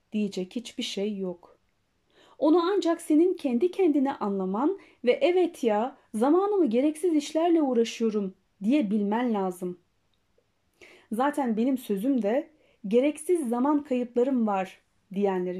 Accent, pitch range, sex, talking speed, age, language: native, 200-300 Hz, female, 110 wpm, 30-49, Turkish